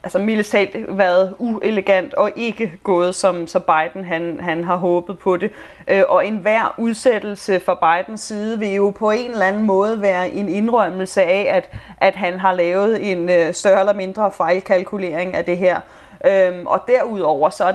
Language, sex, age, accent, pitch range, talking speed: Danish, female, 30-49, native, 185-220 Hz, 170 wpm